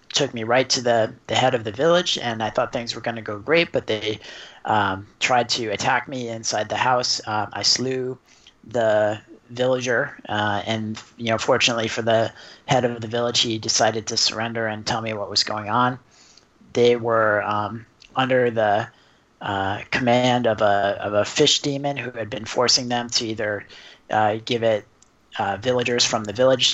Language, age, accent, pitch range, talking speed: English, 30-49, American, 110-125 Hz, 190 wpm